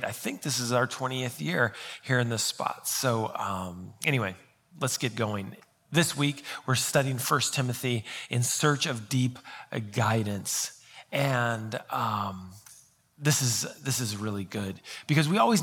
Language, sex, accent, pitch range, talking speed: English, male, American, 115-145 Hz, 150 wpm